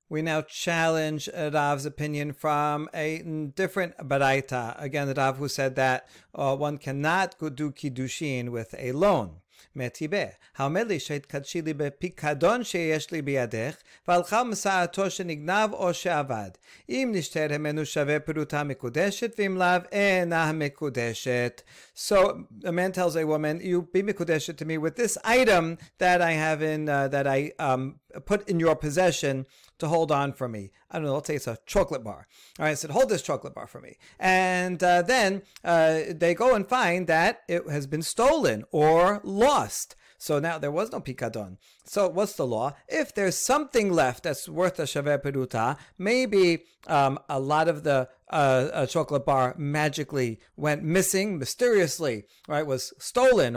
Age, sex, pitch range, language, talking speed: 40-59, male, 140-185 Hz, English, 140 wpm